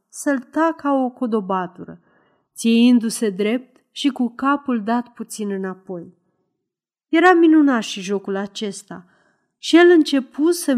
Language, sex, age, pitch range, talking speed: Romanian, female, 30-49, 195-270 Hz, 120 wpm